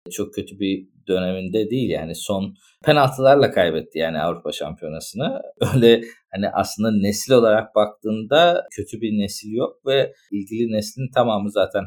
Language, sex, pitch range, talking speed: Turkish, male, 100-115 Hz, 135 wpm